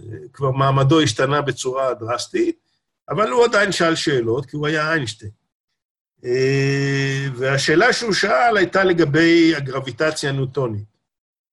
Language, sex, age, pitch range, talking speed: Hebrew, male, 50-69, 130-165 Hz, 115 wpm